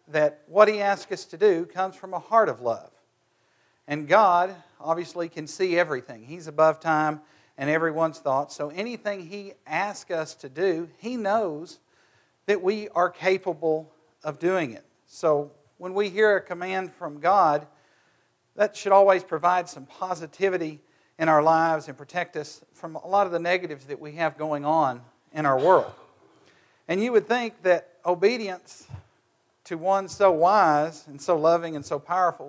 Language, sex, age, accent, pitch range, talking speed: English, male, 50-69, American, 150-185 Hz, 170 wpm